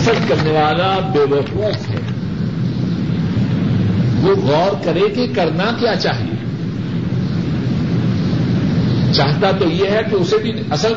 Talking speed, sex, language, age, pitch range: 110 wpm, male, Urdu, 60-79, 170-235 Hz